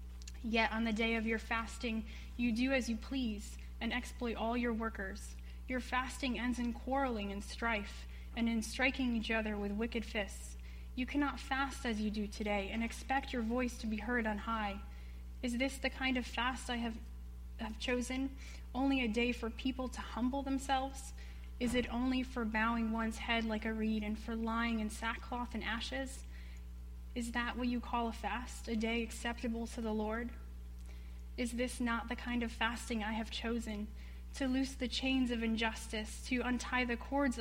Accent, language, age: American, English, 10-29